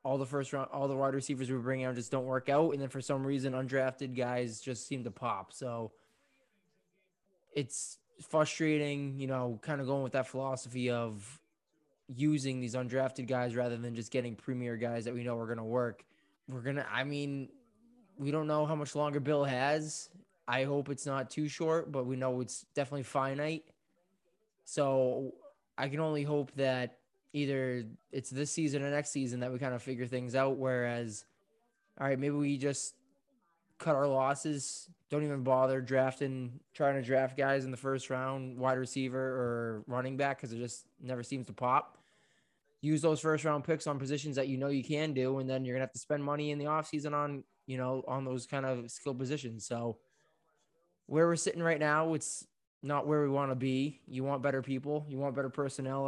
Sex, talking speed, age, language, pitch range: male, 200 wpm, 20-39, English, 130-150 Hz